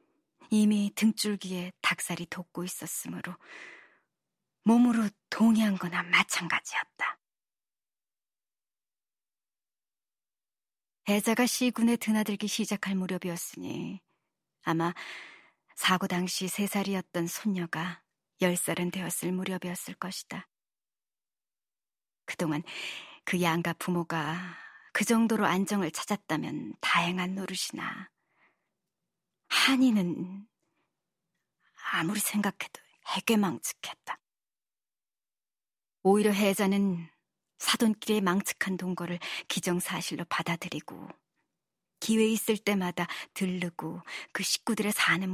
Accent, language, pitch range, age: native, Korean, 175-210 Hz, 40-59